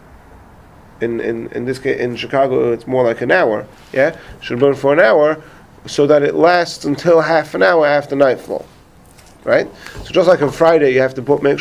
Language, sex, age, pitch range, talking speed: English, male, 30-49, 125-155 Hz, 200 wpm